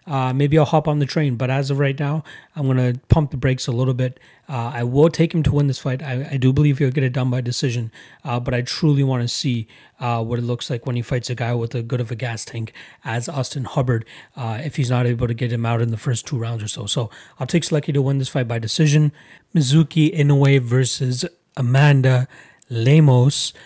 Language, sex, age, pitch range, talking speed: English, male, 30-49, 120-145 Hz, 250 wpm